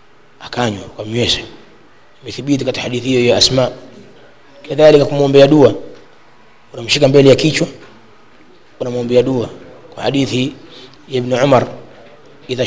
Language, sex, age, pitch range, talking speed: Swahili, male, 20-39, 125-145 Hz, 90 wpm